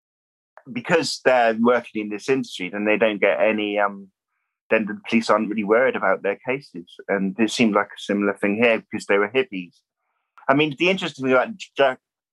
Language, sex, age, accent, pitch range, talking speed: English, male, 20-39, British, 105-150 Hz, 190 wpm